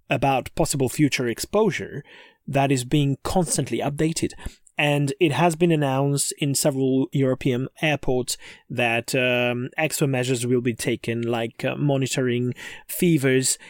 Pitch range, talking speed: 125-160 Hz, 125 wpm